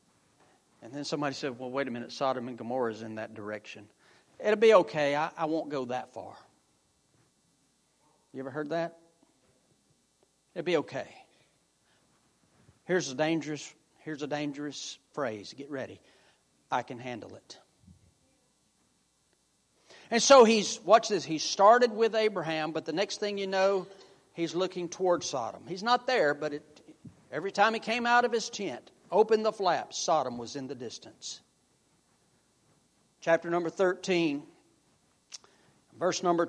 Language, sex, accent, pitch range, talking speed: English, male, American, 155-210 Hz, 145 wpm